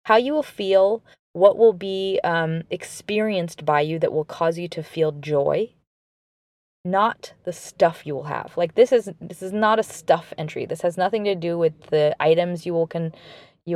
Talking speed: 195 wpm